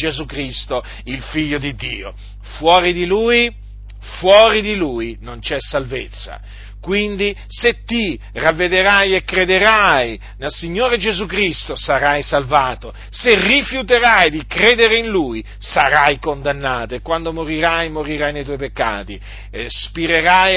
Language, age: Italian, 40-59